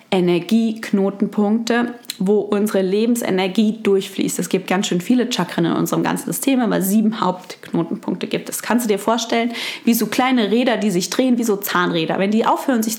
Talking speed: 175 wpm